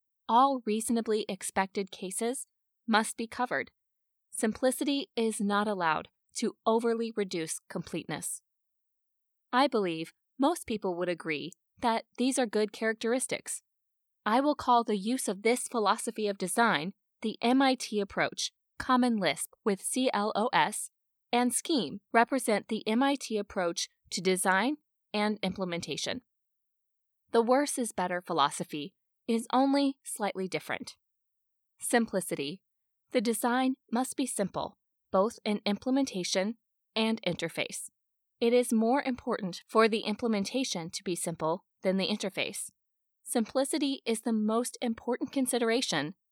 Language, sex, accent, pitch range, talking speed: English, female, American, 190-250 Hz, 120 wpm